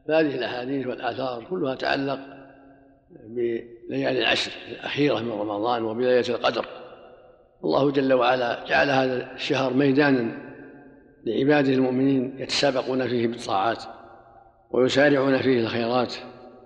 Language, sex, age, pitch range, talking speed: Arabic, male, 50-69, 125-140 Hz, 95 wpm